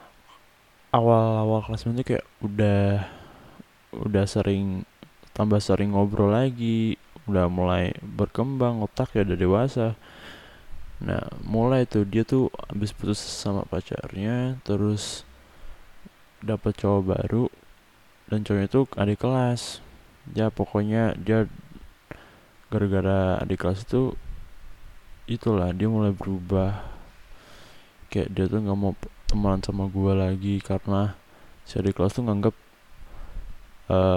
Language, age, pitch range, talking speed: Indonesian, 20-39, 95-110 Hz, 110 wpm